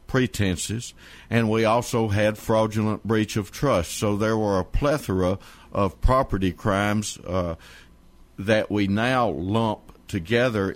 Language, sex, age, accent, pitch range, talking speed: English, male, 60-79, American, 85-110 Hz, 130 wpm